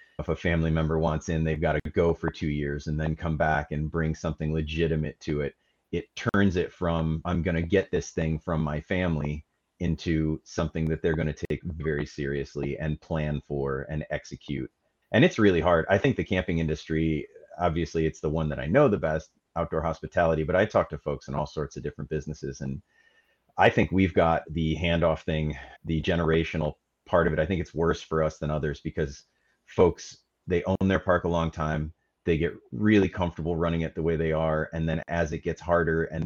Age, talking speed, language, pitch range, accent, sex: 30-49, 210 wpm, English, 75-85 Hz, American, male